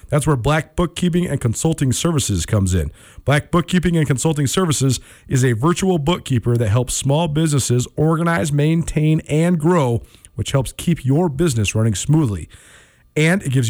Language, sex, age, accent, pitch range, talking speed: English, male, 40-59, American, 120-155 Hz, 160 wpm